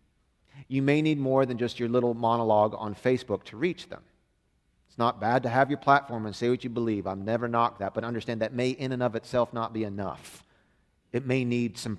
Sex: male